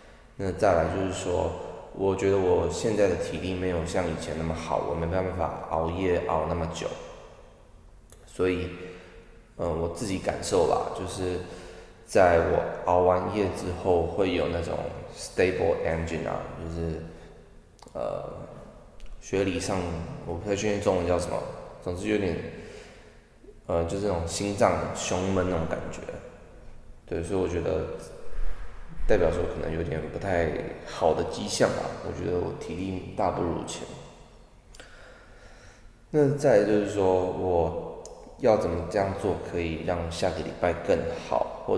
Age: 20-39